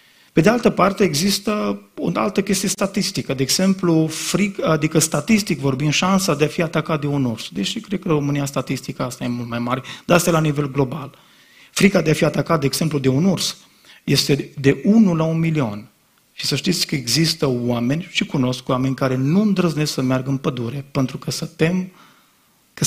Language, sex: Romanian, male